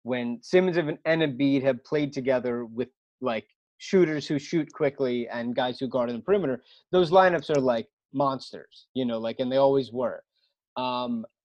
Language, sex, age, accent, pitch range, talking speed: English, male, 30-49, American, 125-155 Hz, 175 wpm